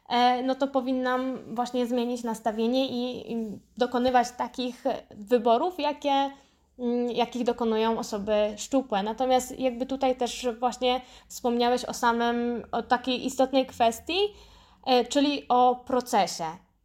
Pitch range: 230-260 Hz